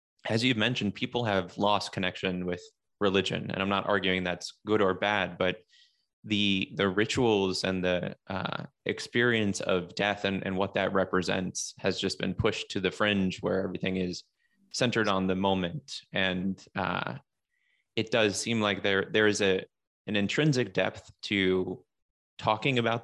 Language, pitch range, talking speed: English, 95-110 Hz, 160 wpm